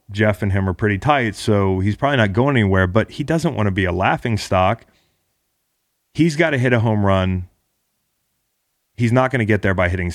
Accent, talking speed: American, 205 wpm